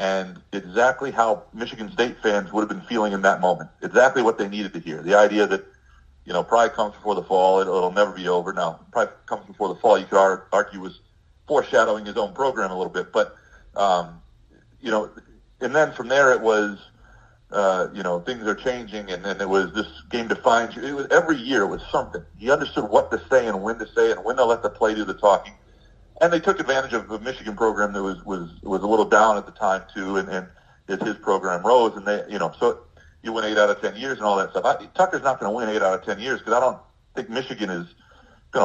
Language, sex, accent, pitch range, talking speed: English, male, American, 95-130 Hz, 245 wpm